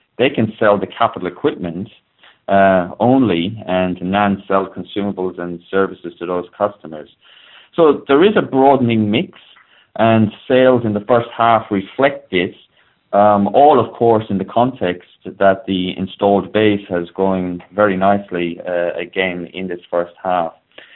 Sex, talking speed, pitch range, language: male, 145 wpm, 90-110 Hz, English